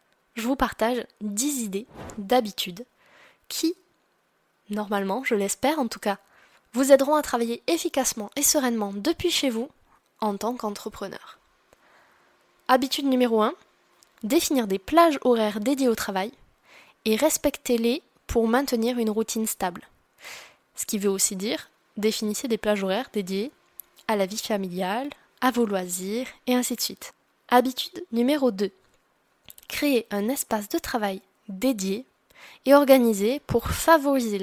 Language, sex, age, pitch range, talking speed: French, female, 10-29, 210-270 Hz, 135 wpm